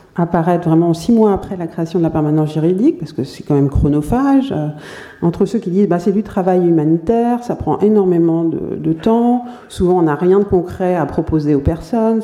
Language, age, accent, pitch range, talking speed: French, 50-69, French, 165-205 Hz, 210 wpm